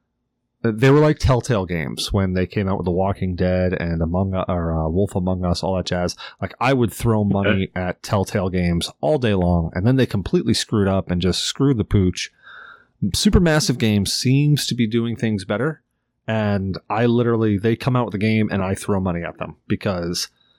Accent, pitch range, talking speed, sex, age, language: American, 100-125 Hz, 200 wpm, male, 30-49, English